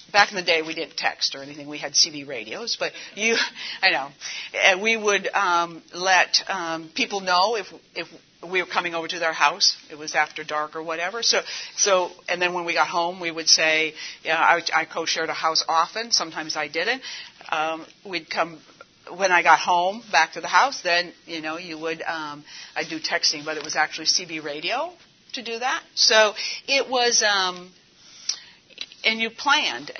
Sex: female